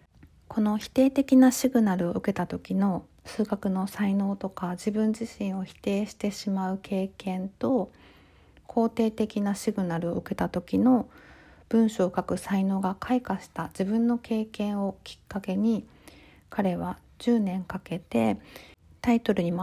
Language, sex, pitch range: Japanese, female, 185-230 Hz